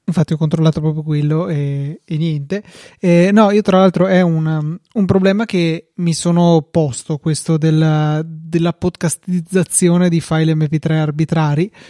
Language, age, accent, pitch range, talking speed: Italian, 20-39, native, 155-180 Hz, 140 wpm